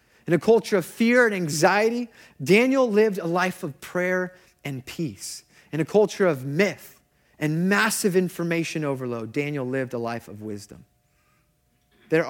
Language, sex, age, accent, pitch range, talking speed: English, male, 30-49, American, 130-165 Hz, 150 wpm